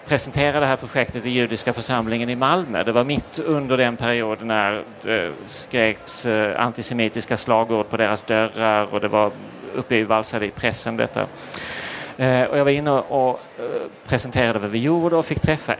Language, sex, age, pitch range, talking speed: Swedish, male, 30-49, 110-130 Hz, 160 wpm